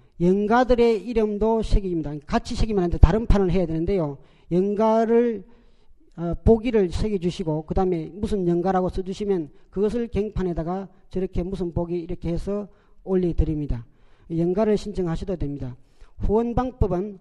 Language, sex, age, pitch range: Korean, male, 40-59, 180-225 Hz